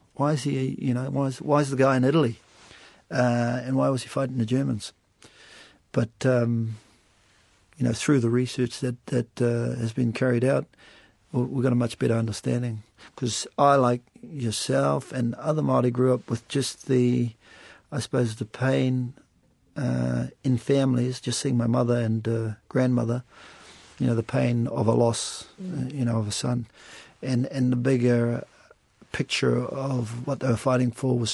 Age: 50-69